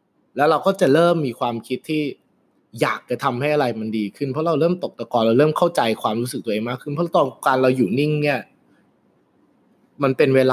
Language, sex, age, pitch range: Thai, male, 20-39, 120-155 Hz